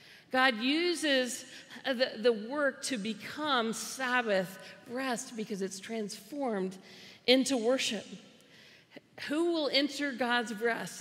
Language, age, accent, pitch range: English, 50-69, American, 210-260 Hz